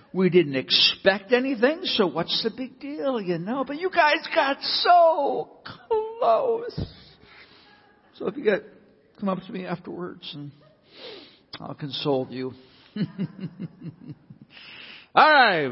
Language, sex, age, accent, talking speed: English, male, 60-79, American, 120 wpm